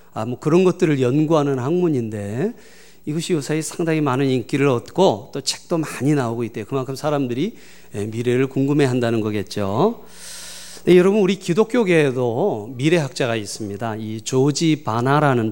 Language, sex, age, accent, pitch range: Korean, male, 40-59, native, 120-195 Hz